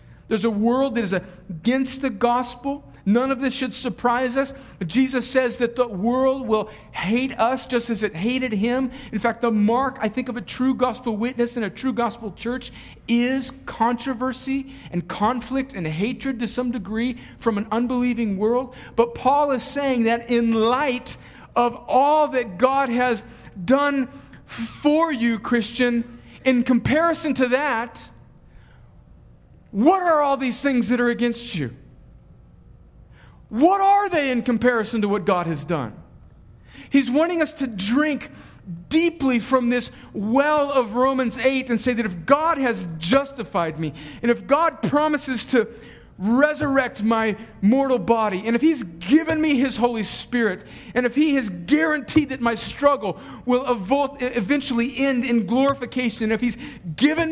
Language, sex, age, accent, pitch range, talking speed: English, male, 50-69, American, 230-270 Hz, 155 wpm